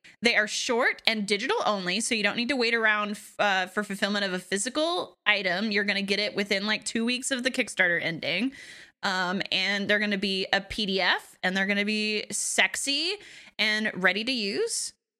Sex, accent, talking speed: female, American, 200 wpm